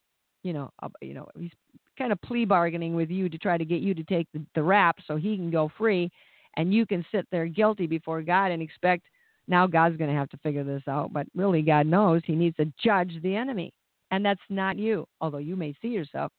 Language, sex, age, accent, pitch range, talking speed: English, female, 50-69, American, 150-180 Hz, 235 wpm